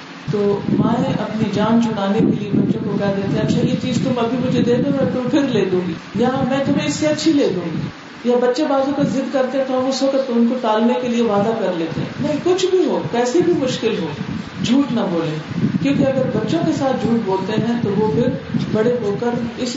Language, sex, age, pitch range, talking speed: Urdu, female, 40-59, 195-245 Hz, 245 wpm